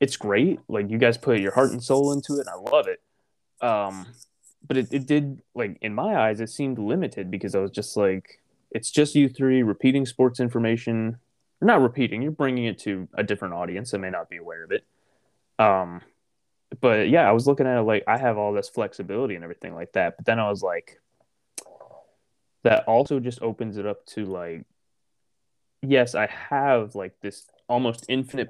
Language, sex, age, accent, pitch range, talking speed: English, male, 20-39, American, 105-130 Hz, 195 wpm